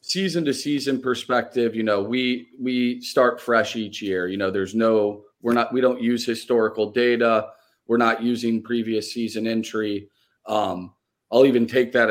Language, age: English, 30-49